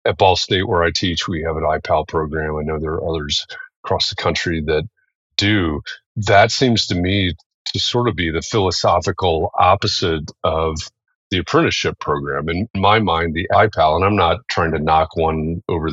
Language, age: English, 40-59